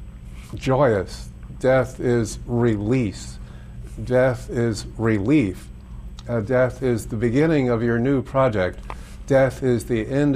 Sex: male